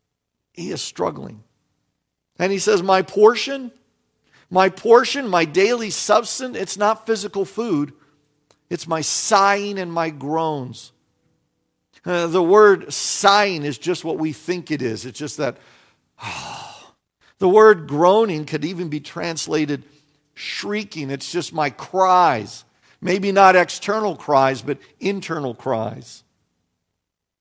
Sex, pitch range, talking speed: male, 135-180 Hz, 125 wpm